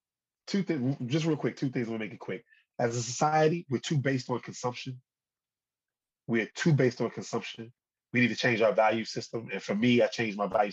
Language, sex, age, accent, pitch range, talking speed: English, male, 20-39, American, 110-135 Hz, 225 wpm